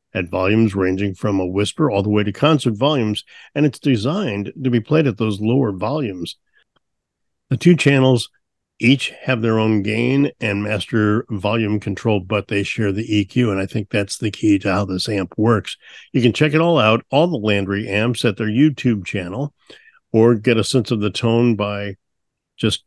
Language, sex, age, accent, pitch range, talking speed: English, male, 50-69, American, 105-125 Hz, 190 wpm